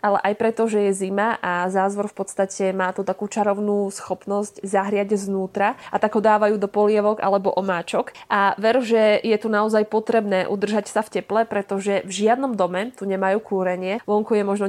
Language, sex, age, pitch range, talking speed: Slovak, female, 20-39, 195-220 Hz, 190 wpm